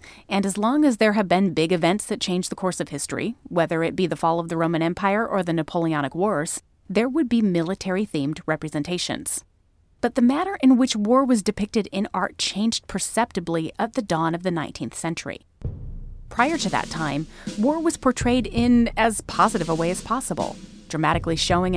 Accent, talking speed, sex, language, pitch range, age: American, 185 wpm, female, English, 170-230 Hz, 30-49